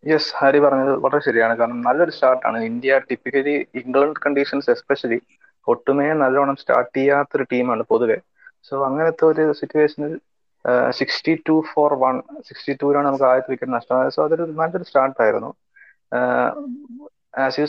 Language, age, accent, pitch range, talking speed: English, 20-39, Indian, 130-165 Hz, 145 wpm